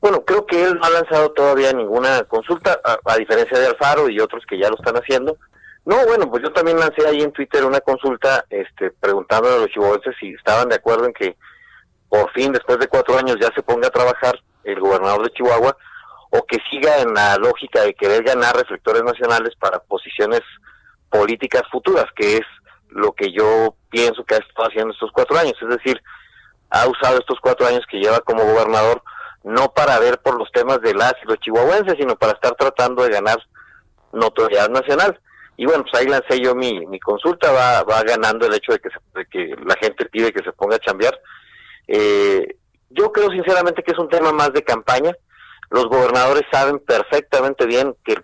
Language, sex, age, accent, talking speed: Spanish, male, 40-59, Mexican, 200 wpm